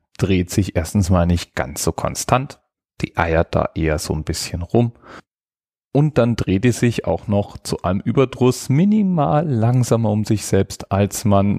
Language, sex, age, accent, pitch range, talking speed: German, male, 40-59, German, 85-115 Hz, 170 wpm